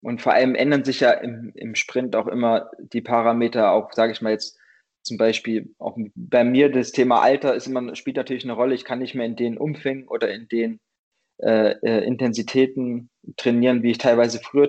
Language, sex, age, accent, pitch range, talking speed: German, male, 20-39, German, 115-135 Hz, 190 wpm